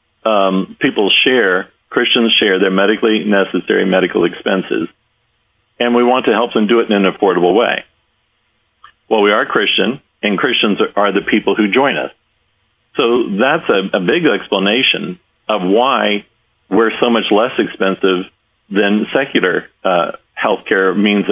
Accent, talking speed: American, 150 wpm